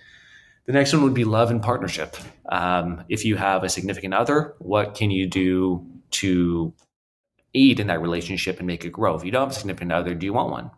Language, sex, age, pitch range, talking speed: English, male, 30-49, 85-110 Hz, 215 wpm